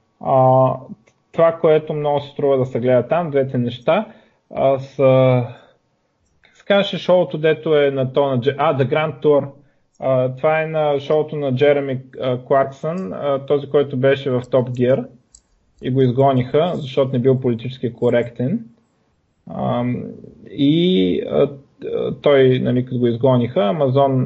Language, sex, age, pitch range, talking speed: Bulgarian, male, 20-39, 125-160 Hz, 125 wpm